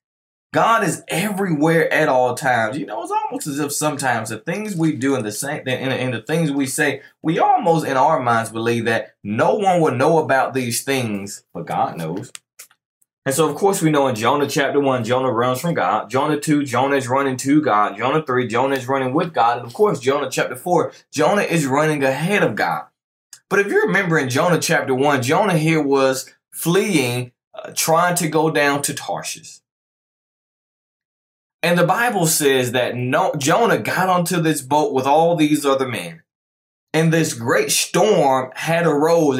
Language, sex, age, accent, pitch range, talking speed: English, male, 20-39, American, 130-165 Hz, 180 wpm